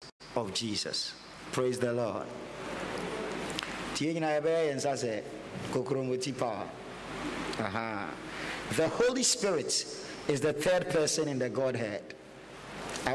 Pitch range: 130-190 Hz